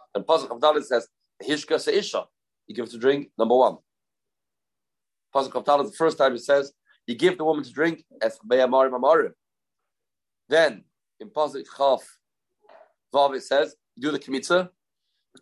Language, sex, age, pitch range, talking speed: English, male, 40-59, 120-180 Hz, 150 wpm